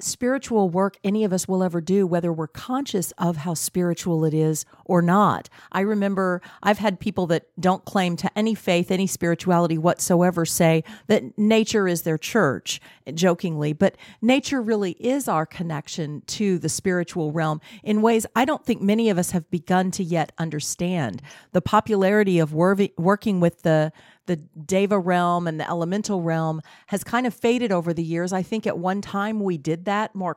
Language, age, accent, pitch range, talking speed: English, 50-69, American, 170-215 Hz, 180 wpm